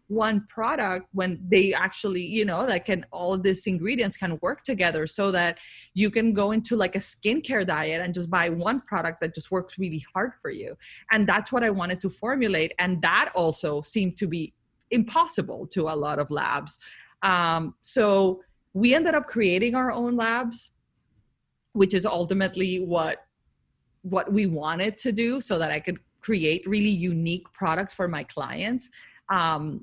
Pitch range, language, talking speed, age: 165-210 Hz, English, 175 wpm, 30-49